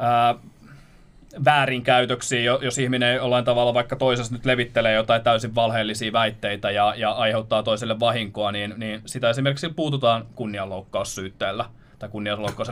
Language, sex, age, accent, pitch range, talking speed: Finnish, male, 20-39, native, 115-145 Hz, 125 wpm